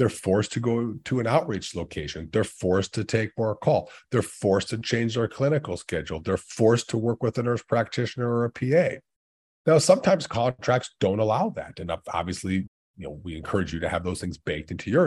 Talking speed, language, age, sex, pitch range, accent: 205 wpm, English, 40-59, male, 95-120 Hz, American